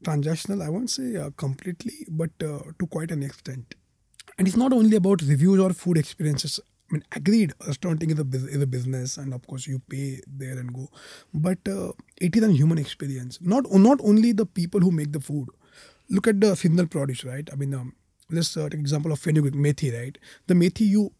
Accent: Indian